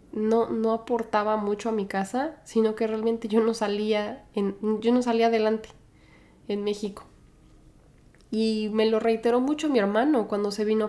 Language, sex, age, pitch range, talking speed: Spanish, female, 10-29, 200-230 Hz, 165 wpm